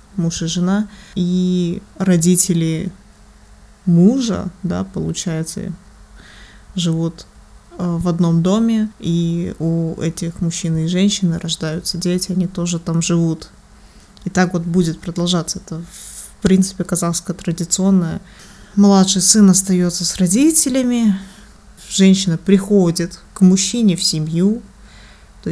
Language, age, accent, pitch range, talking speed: Russian, 20-39, native, 170-195 Hz, 110 wpm